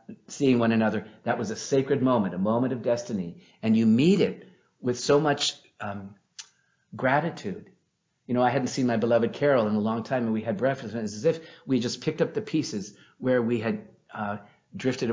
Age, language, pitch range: 50-69, English, 110-150 Hz